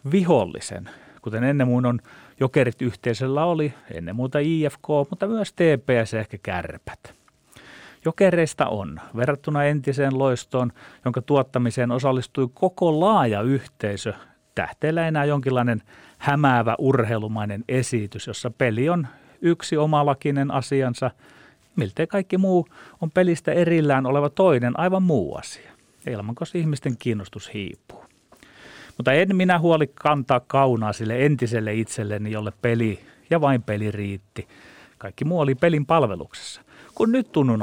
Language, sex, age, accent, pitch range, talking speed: Finnish, male, 30-49, native, 120-165 Hz, 125 wpm